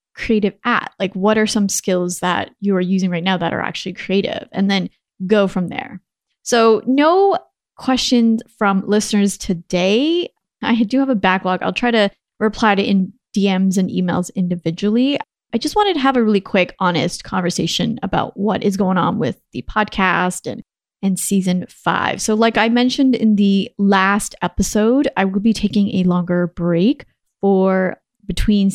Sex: female